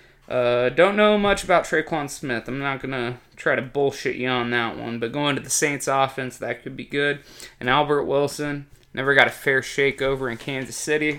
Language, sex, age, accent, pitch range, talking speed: English, male, 20-39, American, 125-150 Hz, 210 wpm